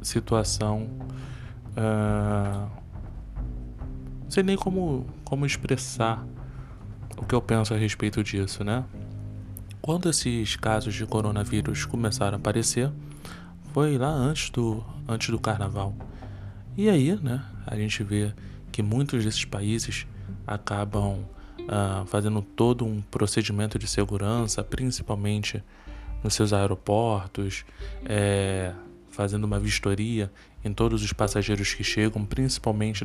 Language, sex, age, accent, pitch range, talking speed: Portuguese, male, 20-39, Brazilian, 100-115 Hz, 115 wpm